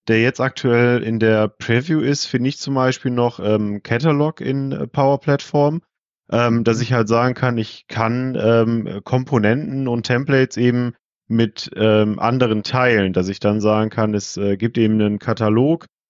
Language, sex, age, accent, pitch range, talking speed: German, male, 30-49, German, 110-125 Hz, 170 wpm